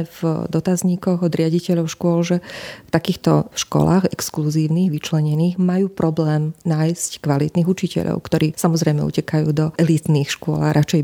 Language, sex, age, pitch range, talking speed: Slovak, female, 30-49, 155-175 Hz, 130 wpm